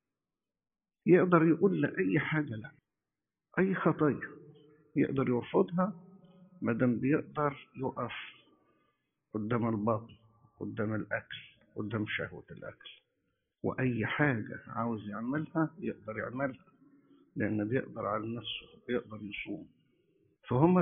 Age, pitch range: 50-69, 120-165 Hz